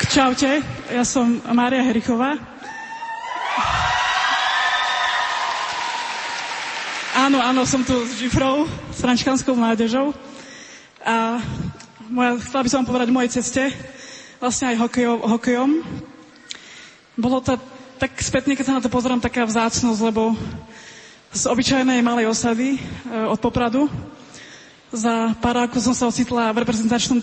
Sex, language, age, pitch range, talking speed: female, Slovak, 20-39, 235-270 Hz, 120 wpm